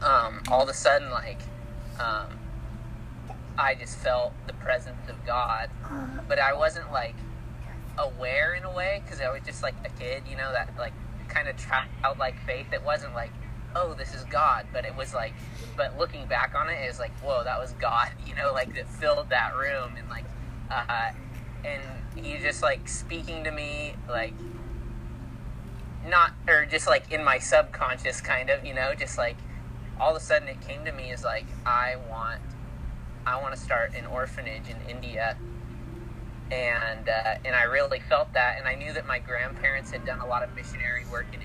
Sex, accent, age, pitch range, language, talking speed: male, American, 20-39, 115-125 Hz, English, 195 wpm